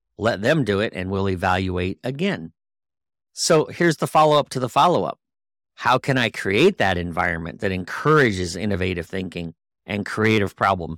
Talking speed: 155 wpm